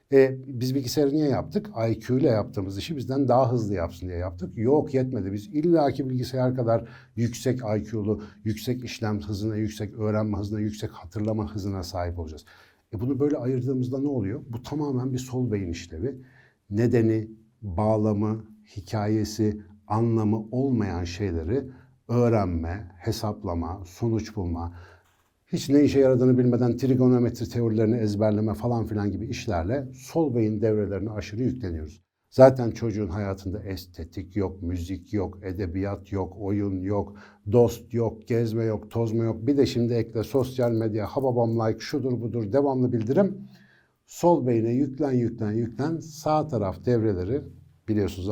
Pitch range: 100-125 Hz